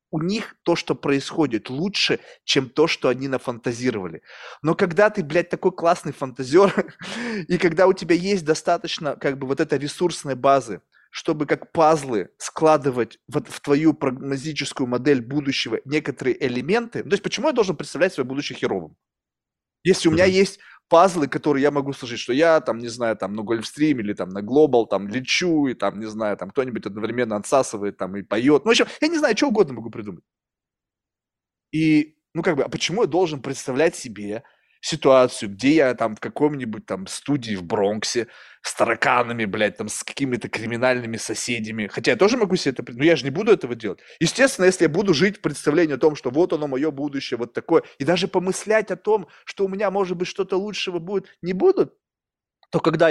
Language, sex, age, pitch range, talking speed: Russian, male, 20-39, 125-180 Hz, 190 wpm